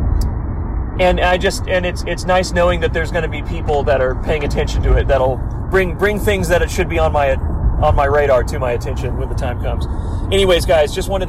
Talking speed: 235 wpm